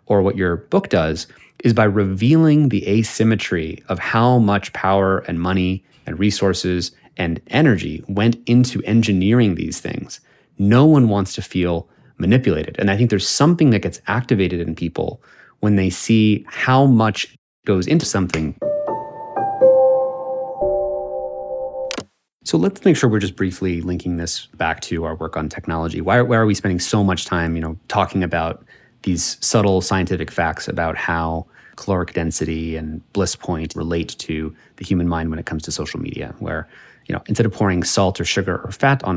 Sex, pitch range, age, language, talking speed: male, 85-115 Hz, 30-49, English, 170 wpm